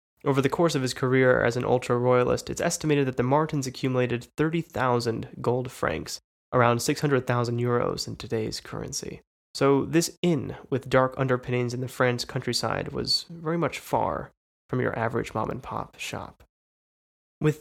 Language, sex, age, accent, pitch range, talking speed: English, male, 20-39, American, 120-140 Hz, 150 wpm